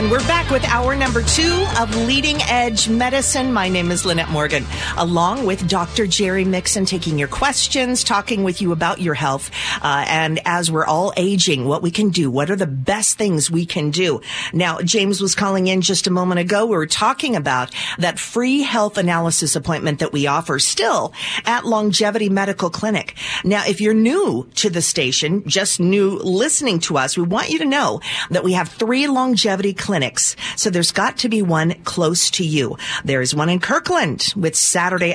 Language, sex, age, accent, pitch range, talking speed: English, female, 40-59, American, 170-220 Hz, 195 wpm